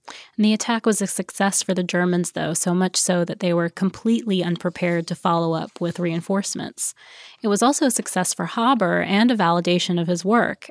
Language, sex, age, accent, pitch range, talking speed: English, female, 20-39, American, 170-200 Hz, 195 wpm